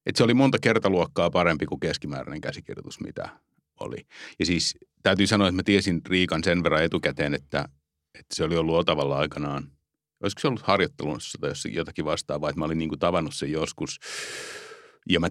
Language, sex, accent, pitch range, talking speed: Finnish, male, native, 75-95 Hz, 190 wpm